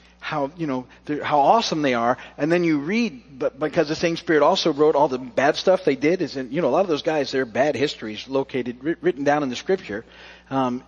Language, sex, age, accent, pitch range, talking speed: English, male, 40-59, American, 135-185 Hz, 230 wpm